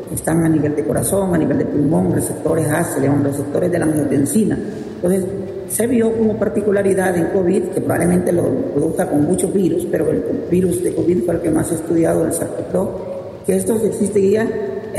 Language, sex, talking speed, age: Spanish, female, 190 wpm, 40-59